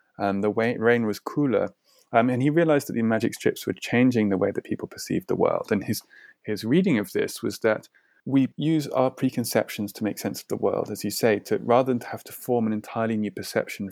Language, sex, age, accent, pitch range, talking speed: English, male, 30-49, British, 100-135 Hz, 235 wpm